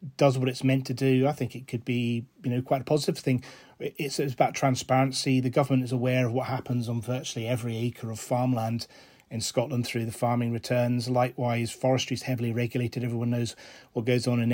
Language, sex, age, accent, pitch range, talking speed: English, male, 30-49, British, 120-130 Hz, 210 wpm